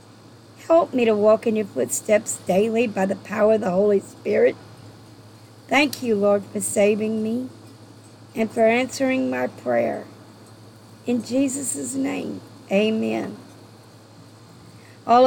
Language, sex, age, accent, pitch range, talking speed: English, female, 50-69, American, 185-245 Hz, 120 wpm